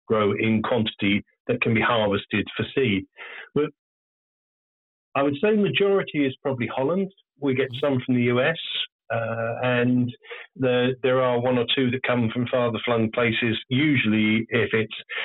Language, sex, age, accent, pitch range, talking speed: English, male, 40-59, British, 110-135 Hz, 155 wpm